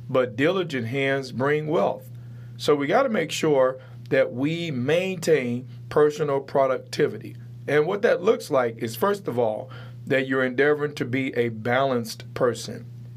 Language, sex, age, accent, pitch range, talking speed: English, male, 40-59, American, 120-145 Hz, 145 wpm